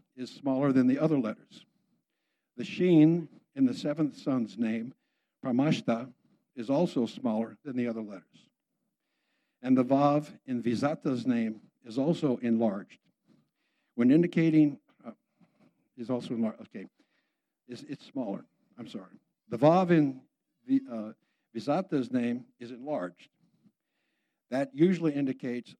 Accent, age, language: American, 60-79, English